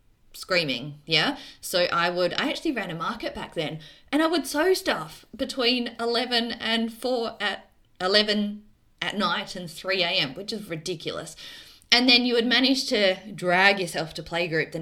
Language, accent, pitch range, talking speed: English, Australian, 160-245 Hz, 170 wpm